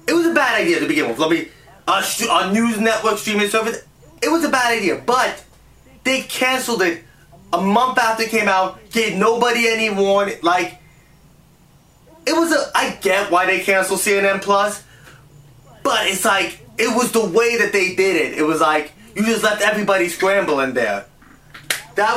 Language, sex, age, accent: English, male, 20-39, American